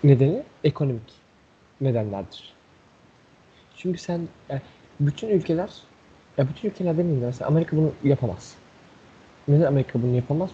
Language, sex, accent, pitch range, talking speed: Turkish, male, native, 135-165 Hz, 110 wpm